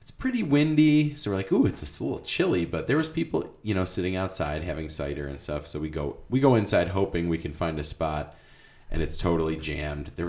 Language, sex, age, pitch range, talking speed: English, male, 30-49, 80-105 Hz, 225 wpm